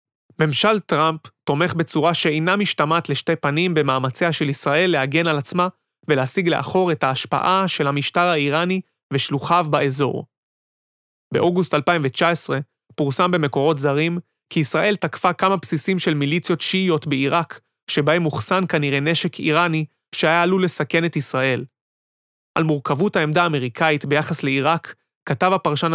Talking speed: 125 wpm